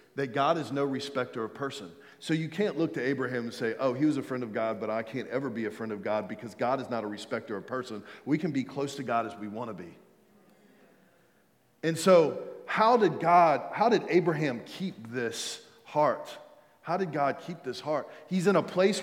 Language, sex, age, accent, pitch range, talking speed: English, male, 40-59, American, 145-190 Hz, 225 wpm